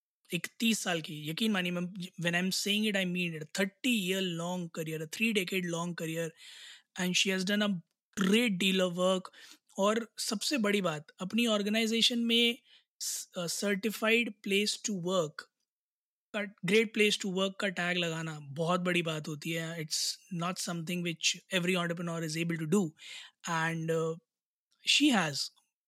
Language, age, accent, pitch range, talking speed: Hindi, 20-39, native, 170-205 Hz, 80 wpm